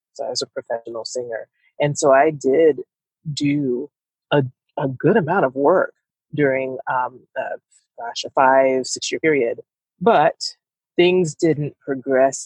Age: 30-49